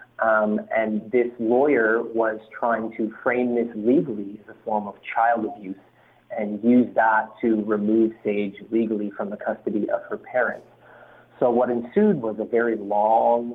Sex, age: male, 30-49